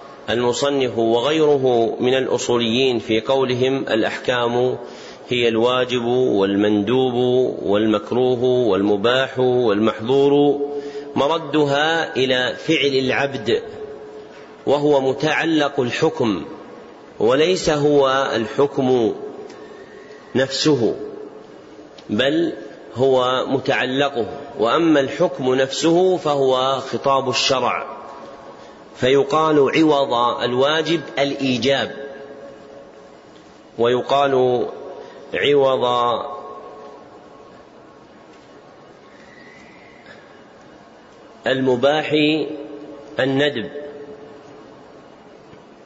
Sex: male